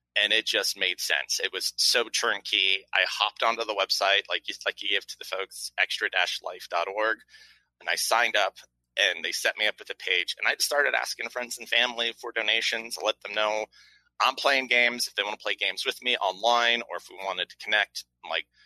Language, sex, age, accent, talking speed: English, male, 30-49, American, 210 wpm